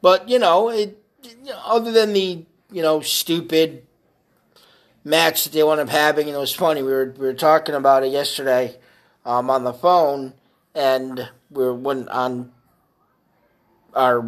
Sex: male